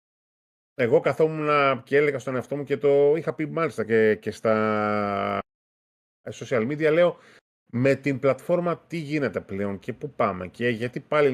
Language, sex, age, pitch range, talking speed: Greek, male, 30-49, 110-150 Hz, 160 wpm